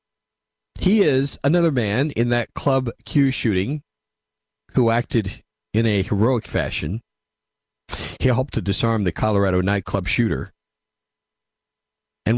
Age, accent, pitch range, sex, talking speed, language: 50-69, American, 80-120 Hz, male, 115 wpm, English